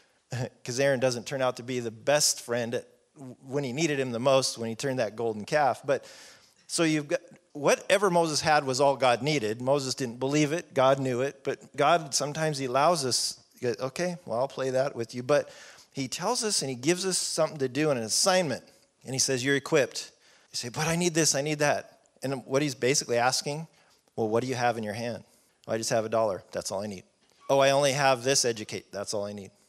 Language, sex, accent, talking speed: English, male, American, 230 wpm